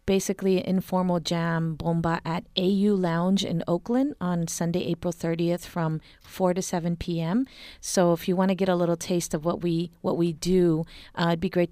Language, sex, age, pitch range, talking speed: English, female, 30-49, 165-190 Hz, 190 wpm